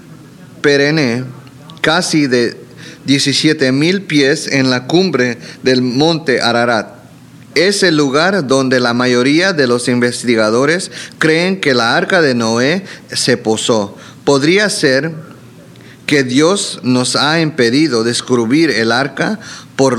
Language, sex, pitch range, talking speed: English, male, 125-155 Hz, 115 wpm